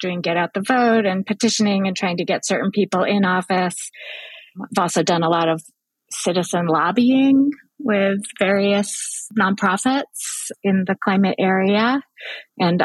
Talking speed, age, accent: 145 wpm, 30-49, American